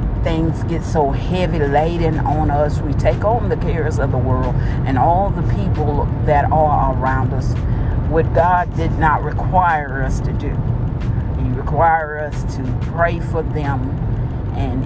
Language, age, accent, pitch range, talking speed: English, 40-59, American, 120-145 Hz, 160 wpm